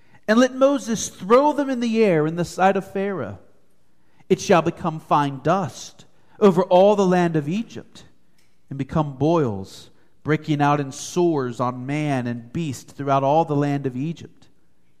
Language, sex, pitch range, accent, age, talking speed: English, male, 130-200 Hz, American, 40-59, 165 wpm